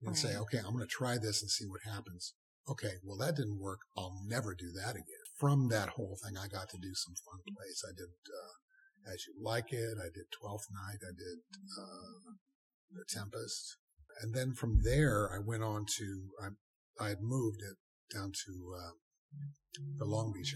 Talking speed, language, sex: 200 wpm, English, male